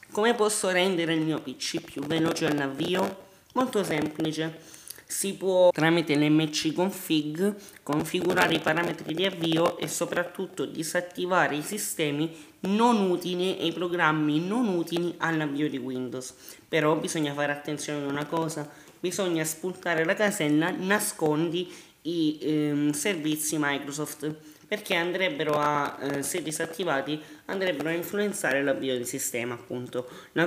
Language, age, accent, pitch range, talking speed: Italian, 20-39, native, 150-180 Hz, 130 wpm